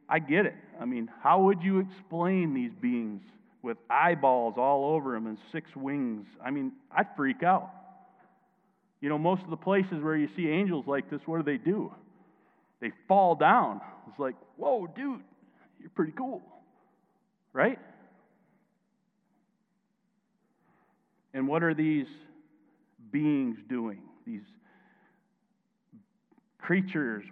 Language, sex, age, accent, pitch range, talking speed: English, male, 40-59, American, 130-205 Hz, 130 wpm